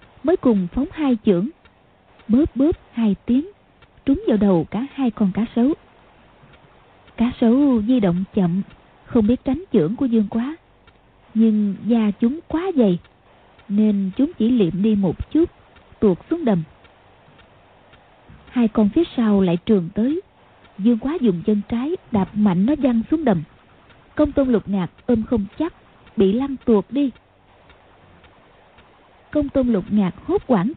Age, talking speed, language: 20-39, 155 wpm, Vietnamese